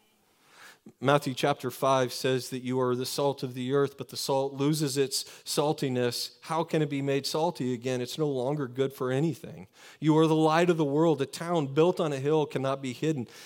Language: English